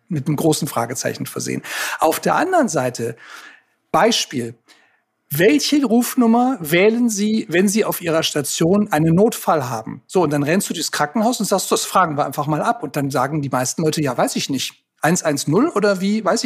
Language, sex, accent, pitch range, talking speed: German, male, German, 150-215 Hz, 185 wpm